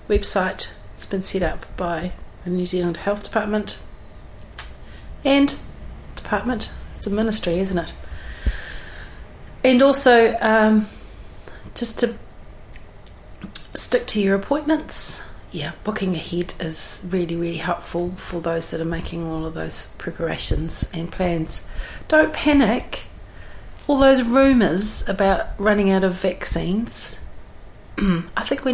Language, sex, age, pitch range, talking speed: English, female, 40-59, 165-220 Hz, 120 wpm